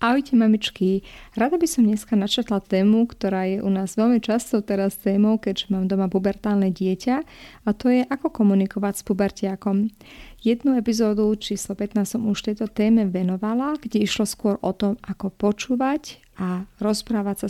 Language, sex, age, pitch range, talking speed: Slovak, female, 30-49, 195-230 Hz, 160 wpm